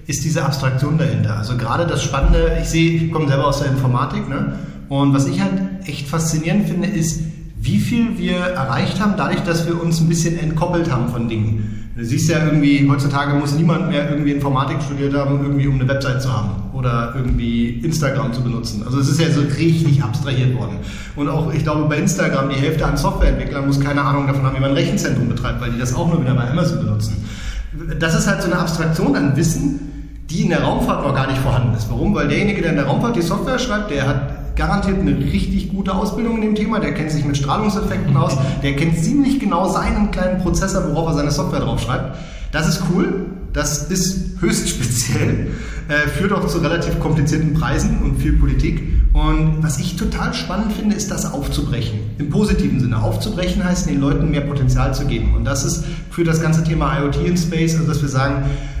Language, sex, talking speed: English, male, 210 wpm